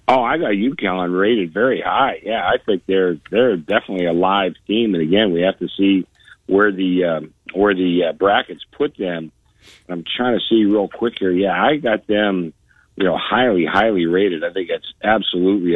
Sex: male